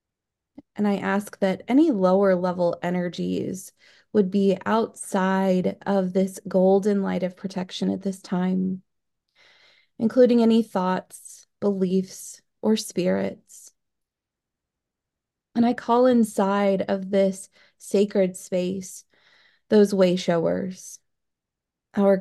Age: 20-39